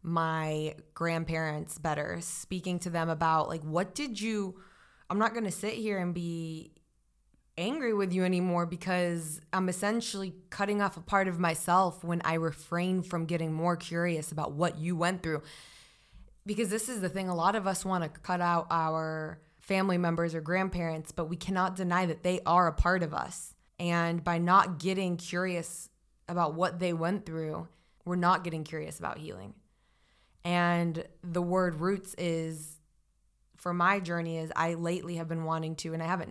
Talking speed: 175 wpm